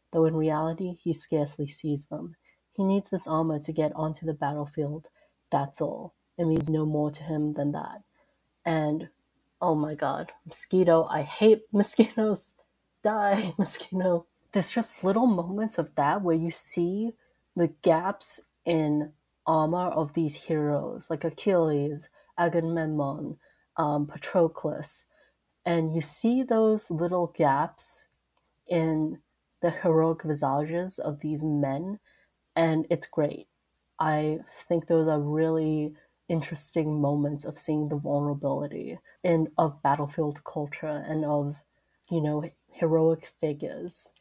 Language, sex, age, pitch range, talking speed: English, female, 30-49, 150-175 Hz, 130 wpm